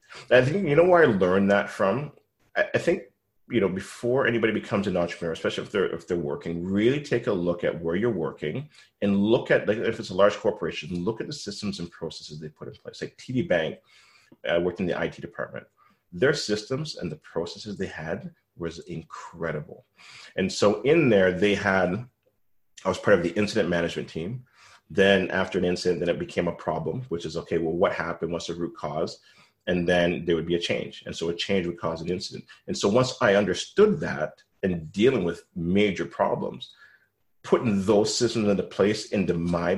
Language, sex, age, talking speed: English, male, 30-49, 205 wpm